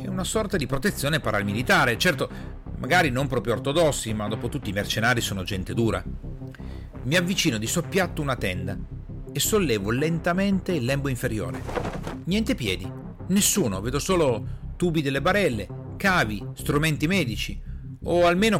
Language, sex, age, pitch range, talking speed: Italian, male, 40-59, 115-150 Hz, 140 wpm